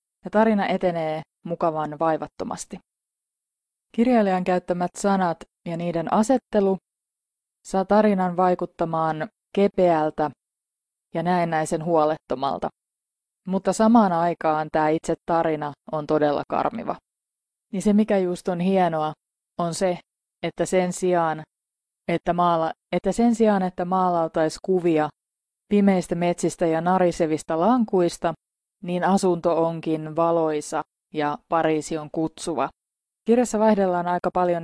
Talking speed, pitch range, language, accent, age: 110 wpm, 160-190 Hz, Finnish, native, 20-39